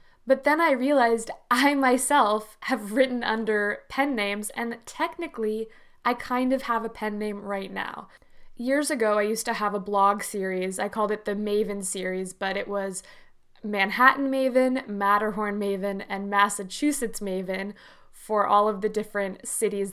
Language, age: English, 10-29